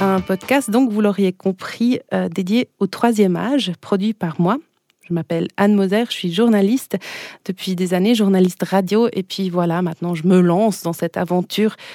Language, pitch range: German, 180-225 Hz